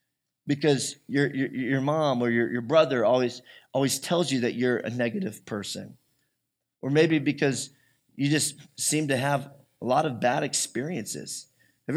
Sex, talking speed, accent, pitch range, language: male, 160 wpm, American, 130-170 Hz, English